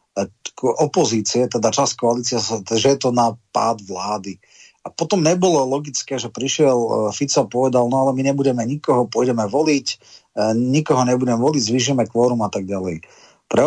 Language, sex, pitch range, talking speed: Slovak, male, 115-130 Hz, 150 wpm